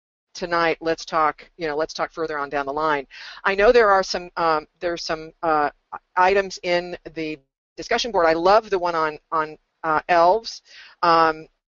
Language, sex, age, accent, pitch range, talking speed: English, female, 40-59, American, 160-200 Hz, 180 wpm